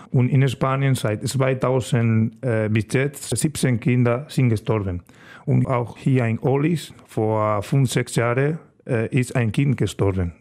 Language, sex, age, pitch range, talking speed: German, male, 40-59, 110-135 Hz, 150 wpm